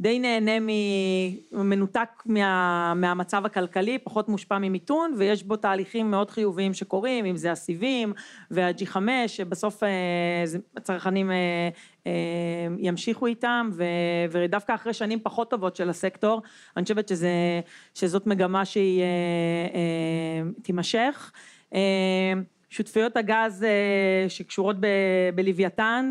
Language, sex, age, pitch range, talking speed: Hebrew, female, 30-49, 185-220 Hz, 115 wpm